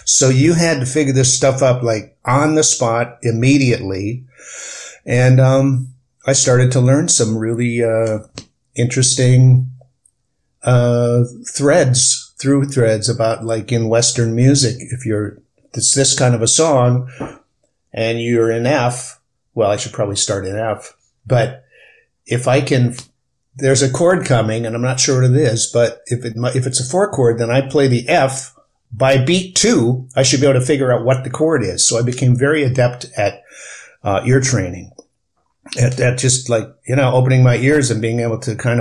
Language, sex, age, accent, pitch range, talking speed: English, male, 50-69, American, 115-130 Hz, 180 wpm